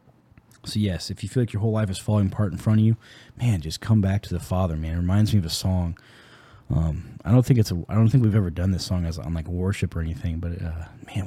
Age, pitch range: 20-39, 85-105 Hz